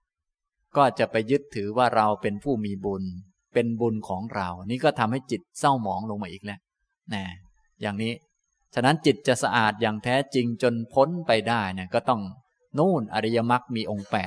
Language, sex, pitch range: Thai, male, 105-130 Hz